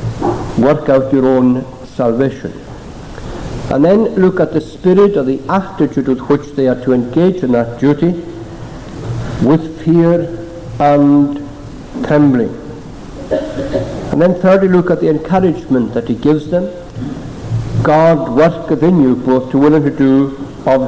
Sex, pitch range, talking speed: male, 120-155 Hz, 140 wpm